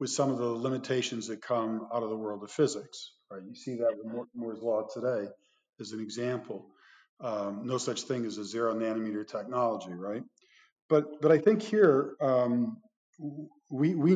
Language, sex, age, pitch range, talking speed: English, male, 50-69, 110-135 Hz, 180 wpm